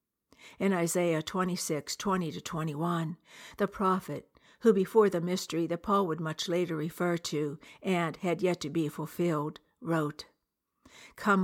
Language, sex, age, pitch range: English, female, 60-79, 160-190 Hz